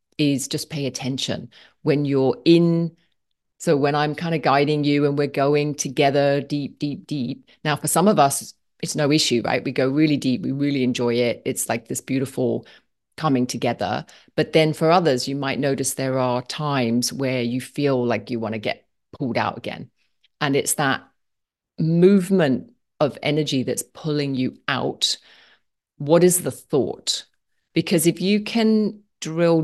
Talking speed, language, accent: 170 wpm, English, British